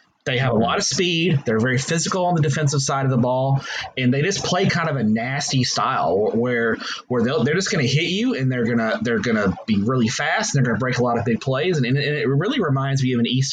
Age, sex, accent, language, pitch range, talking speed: 20-39, male, American, English, 125-145 Hz, 270 wpm